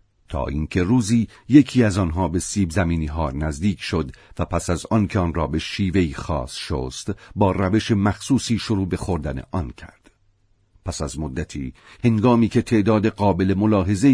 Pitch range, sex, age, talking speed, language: 80-105 Hz, male, 50-69, 160 wpm, Persian